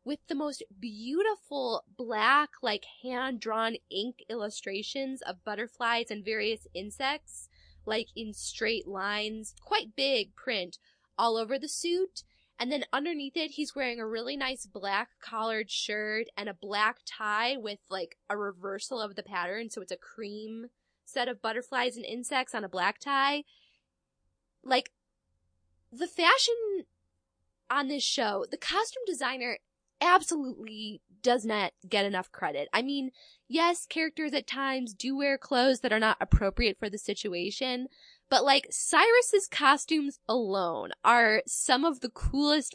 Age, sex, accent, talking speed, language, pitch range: 10-29, female, American, 145 wpm, English, 210-275 Hz